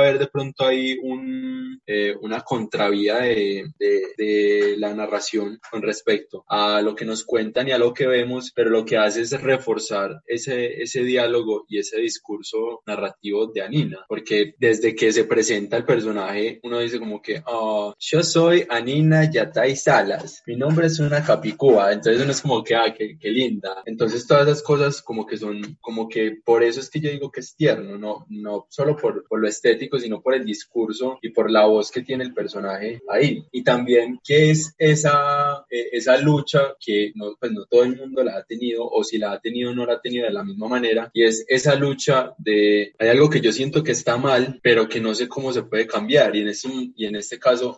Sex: male